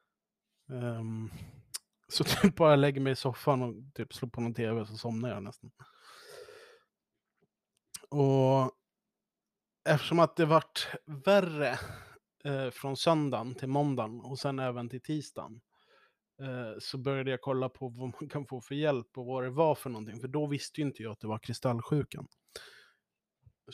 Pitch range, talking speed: 120-150 Hz, 160 wpm